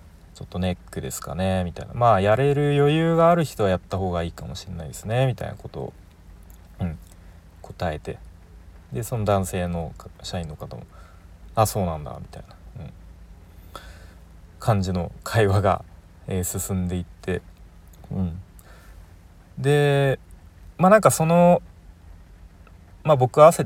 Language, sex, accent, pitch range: Japanese, male, native, 85-110 Hz